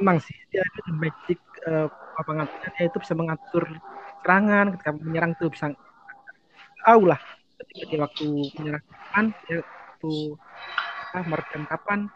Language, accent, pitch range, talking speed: Indonesian, native, 155-200 Hz, 125 wpm